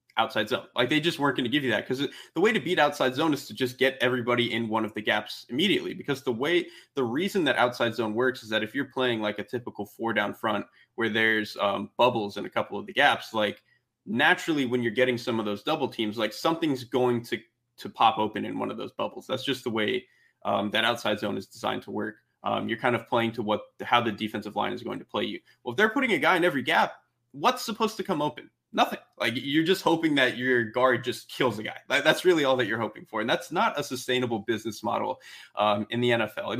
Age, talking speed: 20-39, 250 wpm